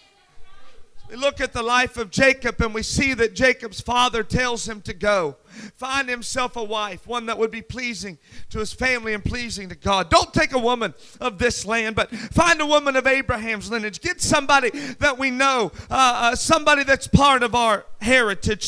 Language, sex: English, male